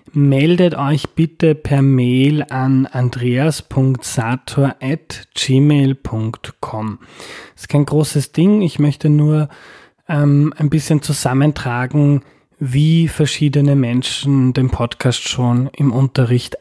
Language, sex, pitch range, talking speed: German, male, 125-150 Hz, 100 wpm